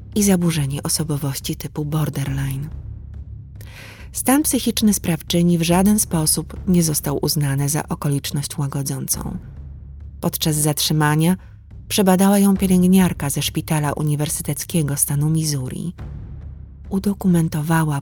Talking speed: 95 wpm